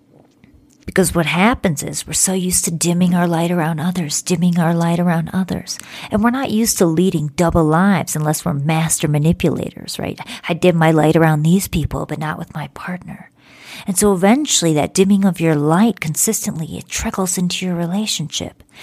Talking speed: 180 wpm